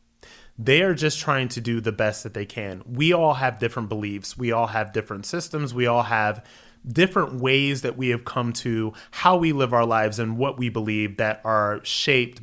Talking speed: 210 wpm